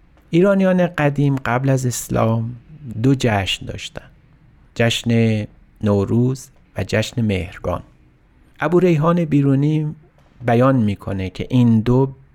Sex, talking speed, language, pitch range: male, 100 wpm, Persian, 105-135 Hz